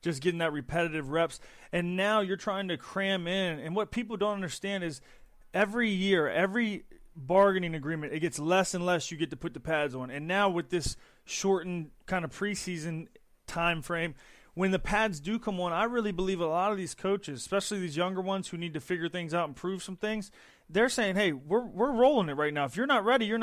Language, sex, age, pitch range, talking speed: English, male, 30-49, 165-200 Hz, 225 wpm